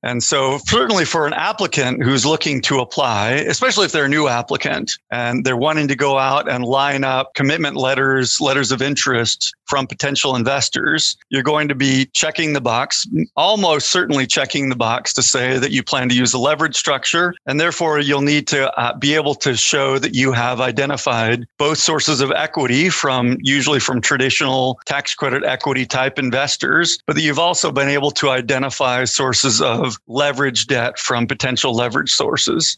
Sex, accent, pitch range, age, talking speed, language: male, American, 130-150 Hz, 40-59, 180 wpm, English